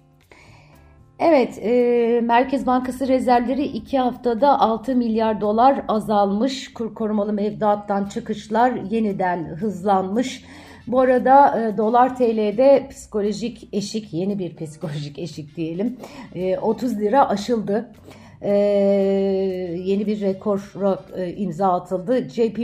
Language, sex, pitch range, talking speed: Turkish, female, 190-225 Hz, 110 wpm